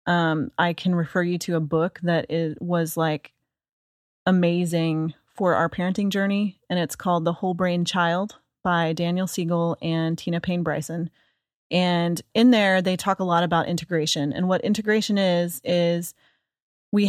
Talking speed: 160 wpm